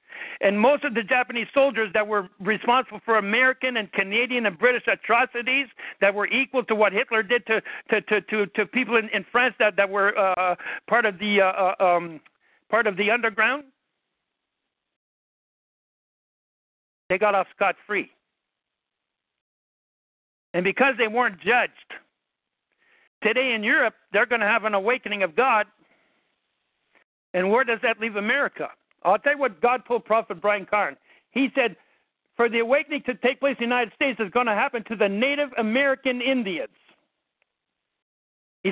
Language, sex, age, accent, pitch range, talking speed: English, male, 60-79, American, 200-255 Hz, 160 wpm